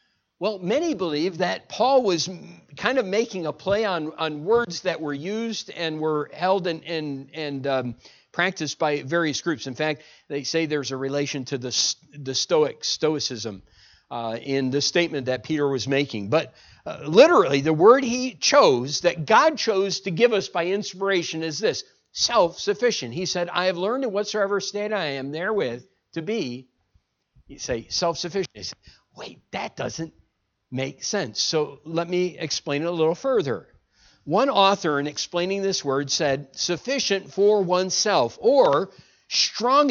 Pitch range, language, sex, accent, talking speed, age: 145-205 Hz, English, male, American, 160 wpm, 50-69